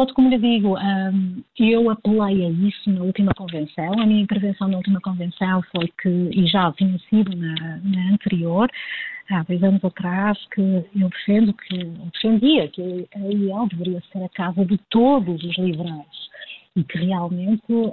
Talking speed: 165 wpm